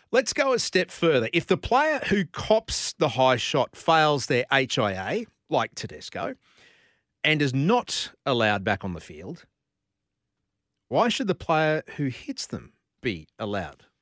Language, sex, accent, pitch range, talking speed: English, male, Australian, 130-185 Hz, 150 wpm